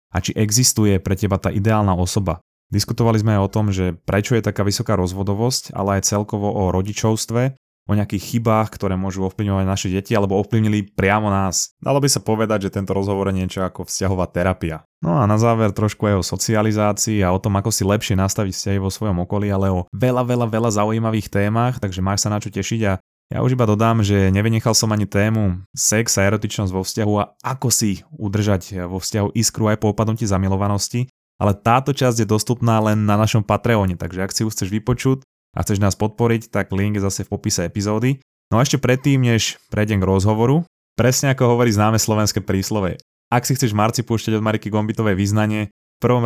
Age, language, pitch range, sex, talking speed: 20-39, Slovak, 100-115 Hz, male, 205 wpm